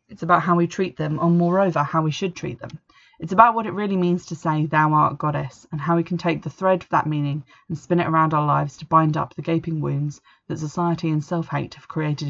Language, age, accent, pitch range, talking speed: English, 20-39, British, 150-175 Hz, 260 wpm